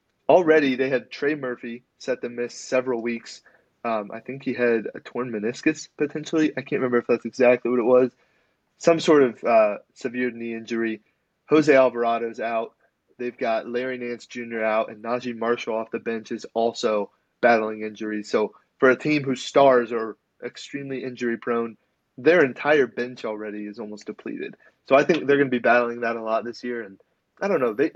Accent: American